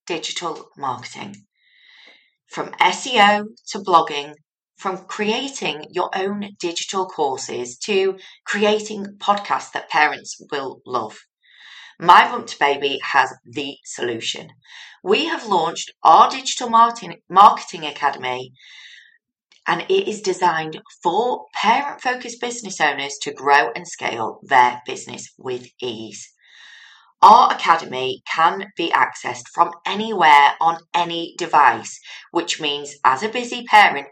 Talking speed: 115 wpm